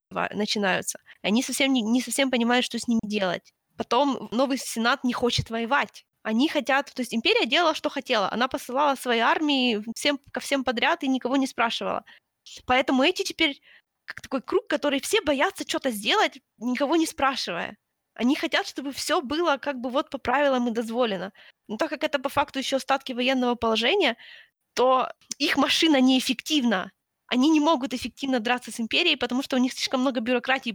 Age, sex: 20-39, female